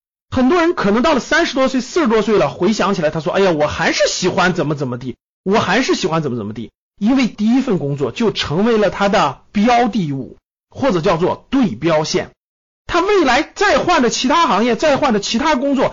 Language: Chinese